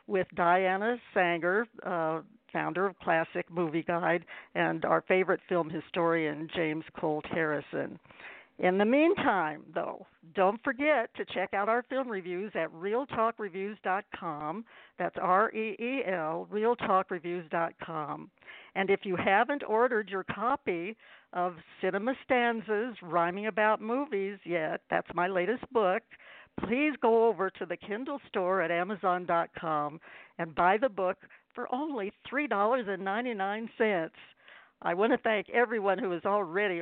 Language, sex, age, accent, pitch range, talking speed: English, female, 60-79, American, 175-230 Hz, 125 wpm